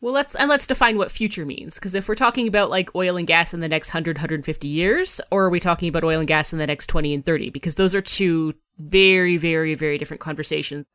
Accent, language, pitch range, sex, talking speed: American, English, 150-190 Hz, female, 250 wpm